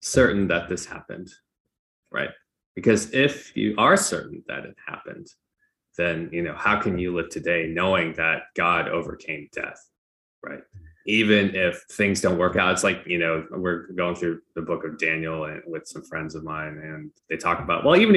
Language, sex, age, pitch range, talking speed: English, male, 20-39, 85-100 Hz, 185 wpm